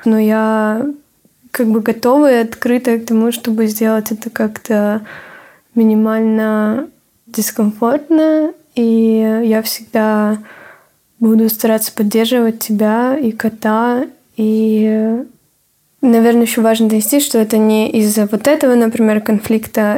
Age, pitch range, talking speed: 20-39, 215-235 Hz, 110 wpm